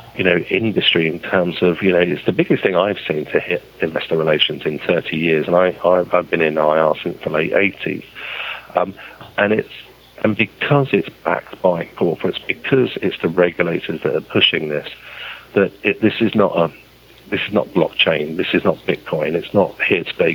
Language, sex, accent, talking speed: English, male, British, 200 wpm